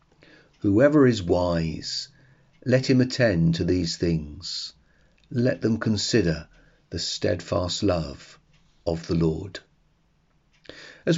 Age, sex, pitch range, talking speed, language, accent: 40-59, male, 90-120 Hz, 100 wpm, English, British